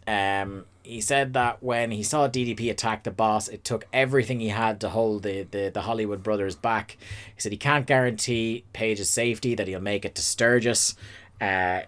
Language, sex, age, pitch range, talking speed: English, male, 30-49, 105-130 Hz, 190 wpm